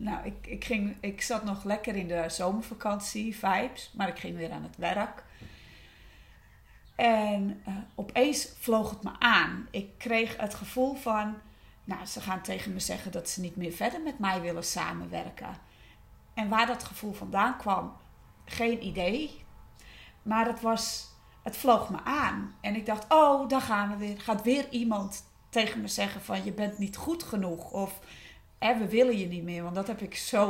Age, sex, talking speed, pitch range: 40-59, female, 180 wpm, 190-230 Hz